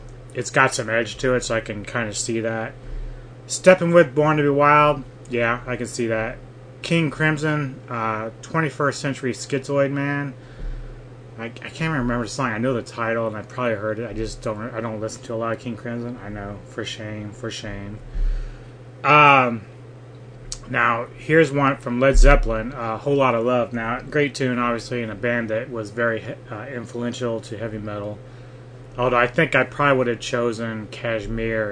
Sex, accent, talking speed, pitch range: male, American, 190 wpm, 115-130 Hz